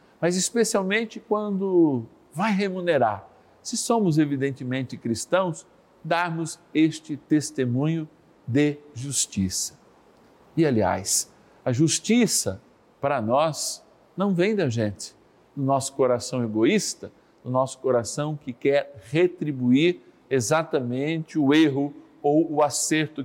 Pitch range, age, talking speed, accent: 120-170 Hz, 50-69, 110 wpm, Brazilian